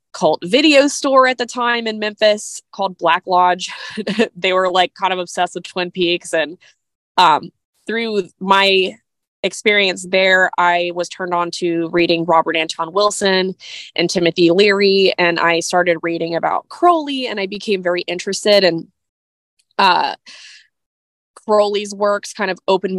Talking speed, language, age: 145 wpm, English, 20-39